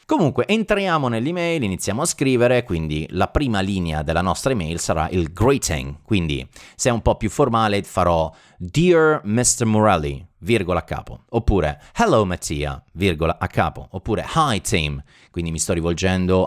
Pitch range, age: 80-115 Hz, 30-49